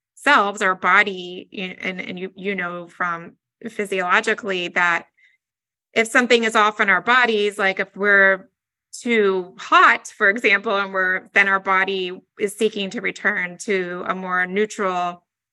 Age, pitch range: 30-49, 180-215 Hz